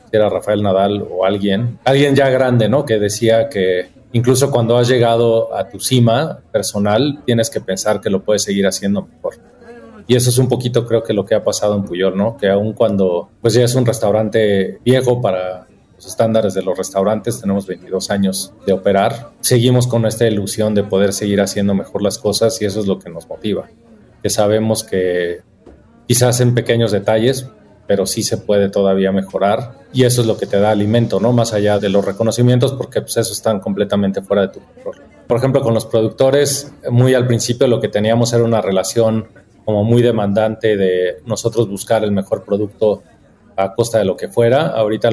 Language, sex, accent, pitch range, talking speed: Spanish, male, Mexican, 100-115 Hz, 195 wpm